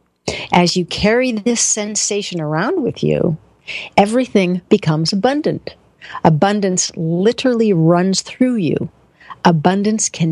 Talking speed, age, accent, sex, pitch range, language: 105 wpm, 50-69, American, female, 170-230 Hz, English